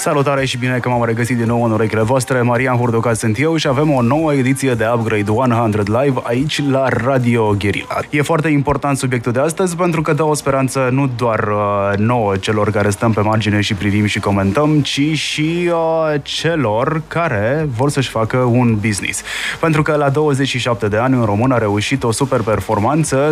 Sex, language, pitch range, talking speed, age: male, Romanian, 110-140 Hz, 195 wpm, 20-39